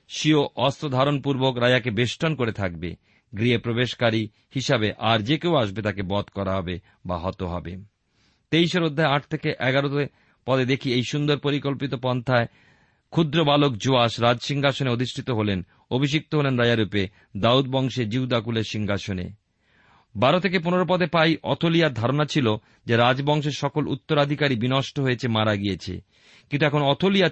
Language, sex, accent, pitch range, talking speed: Bengali, male, native, 115-155 Hz, 140 wpm